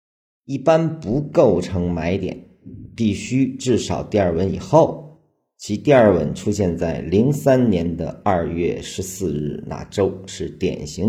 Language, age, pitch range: Chinese, 50-69, 85-110 Hz